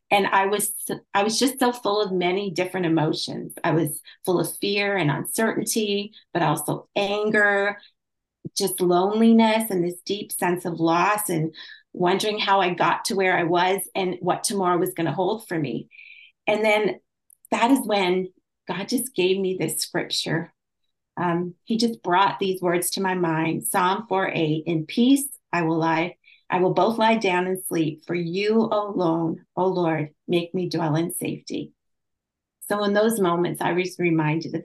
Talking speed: 175 wpm